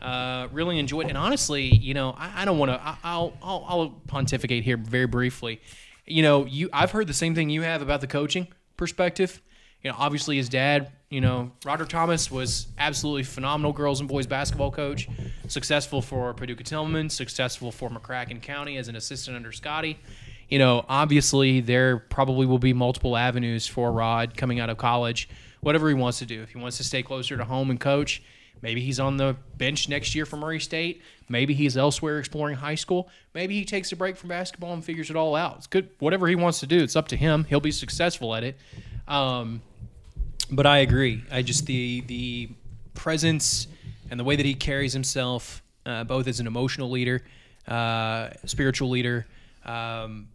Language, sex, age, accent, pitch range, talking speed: English, male, 20-39, American, 120-150 Hz, 195 wpm